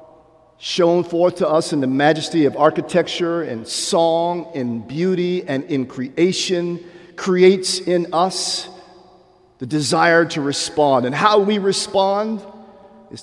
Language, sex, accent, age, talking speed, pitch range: English, male, American, 50-69, 125 wpm, 140-185 Hz